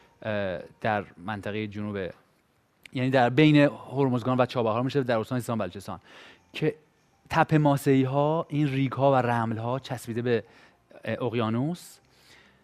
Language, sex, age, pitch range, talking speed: Persian, male, 30-49, 110-135 Hz, 130 wpm